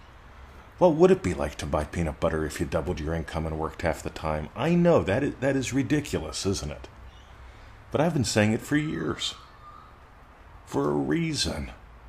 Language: English